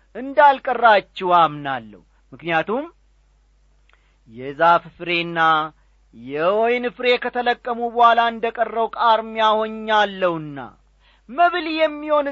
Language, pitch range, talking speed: Amharic, 150-245 Hz, 70 wpm